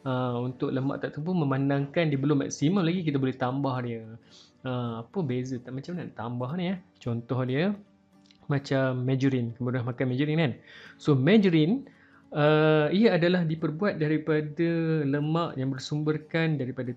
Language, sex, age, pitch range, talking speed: Malay, male, 20-39, 130-170 Hz, 150 wpm